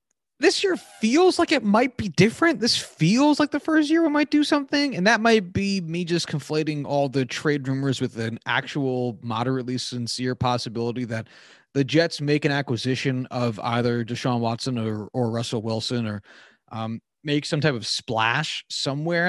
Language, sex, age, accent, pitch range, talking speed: English, male, 30-49, American, 120-175 Hz, 175 wpm